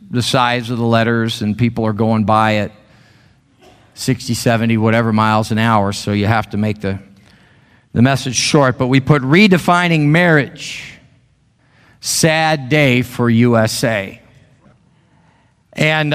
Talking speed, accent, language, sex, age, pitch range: 135 wpm, American, English, male, 50-69, 120-155 Hz